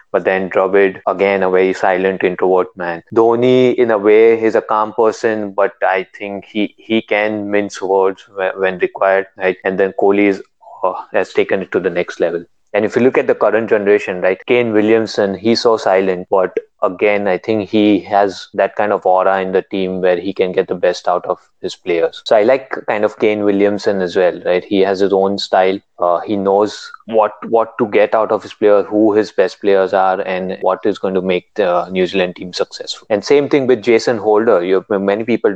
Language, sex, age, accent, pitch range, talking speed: English, male, 20-39, Indian, 95-110 Hz, 215 wpm